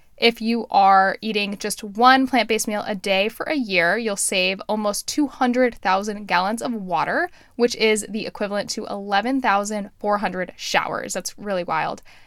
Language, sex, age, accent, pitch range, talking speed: English, female, 10-29, American, 195-255 Hz, 145 wpm